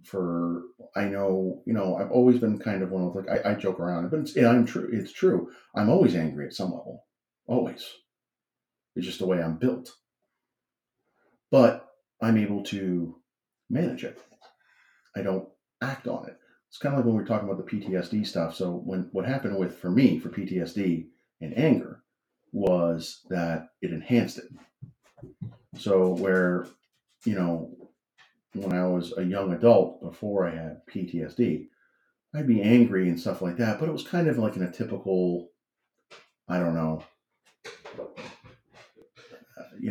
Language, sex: English, male